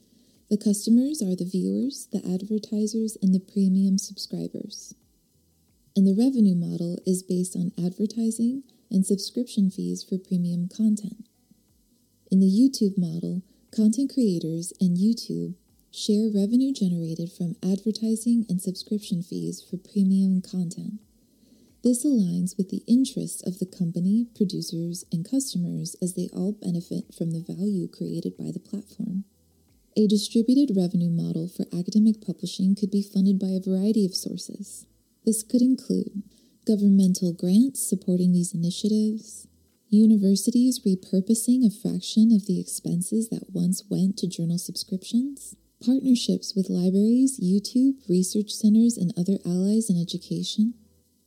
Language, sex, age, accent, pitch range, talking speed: English, female, 20-39, American, 180-225 Hz, 130 wpm